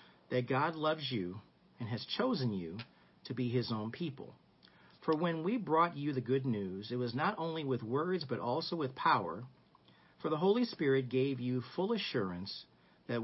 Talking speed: 180 wpm